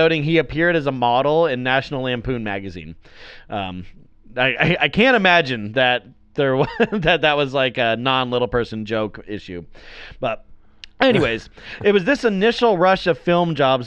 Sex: male